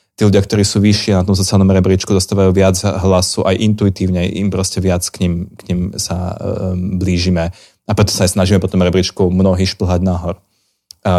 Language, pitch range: Slovak, 90-105 Hz